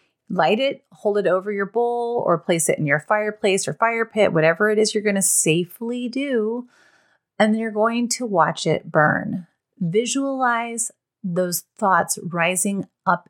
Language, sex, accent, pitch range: English, female, American, 170-230 Hz